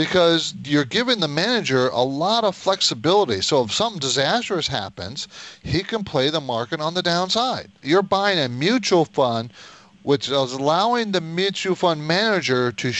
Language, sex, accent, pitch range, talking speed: English, male, American, 120-165 Hz, 160 wpm